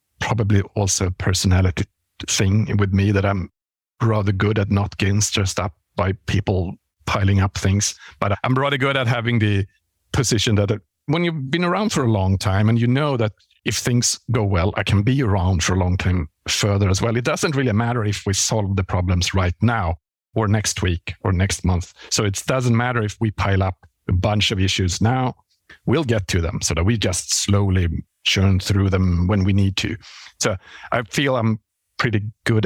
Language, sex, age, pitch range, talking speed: English, male, 50-69, 95-110 Hz, 200 wpm